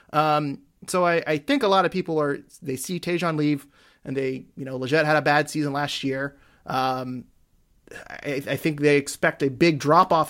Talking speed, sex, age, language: 205 wpm, male, 30-49, English